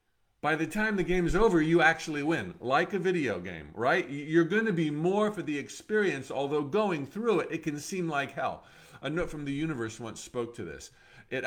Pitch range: 110-150 Hz